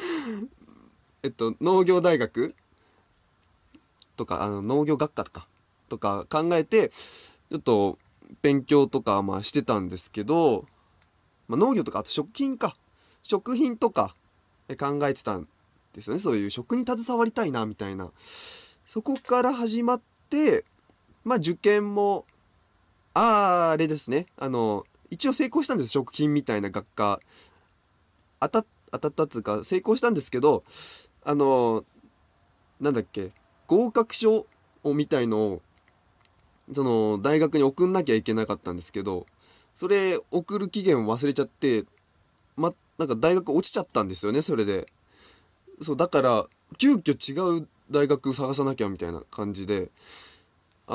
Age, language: 20-39, Japanese